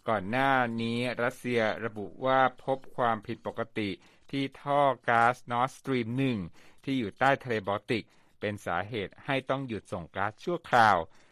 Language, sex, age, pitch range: Thai, male, 60-79, 115-145 Hz